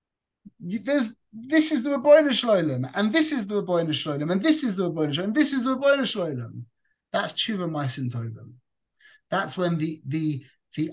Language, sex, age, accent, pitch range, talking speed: English, male, 30-49, British, 140-200 Hz, 155 wpm